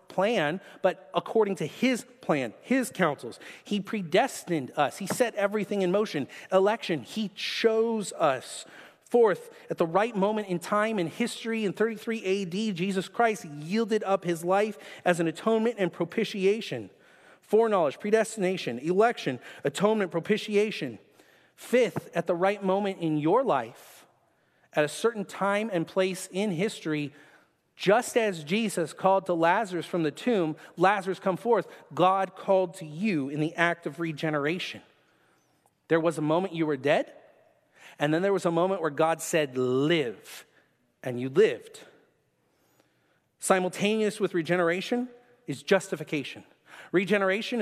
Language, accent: English, American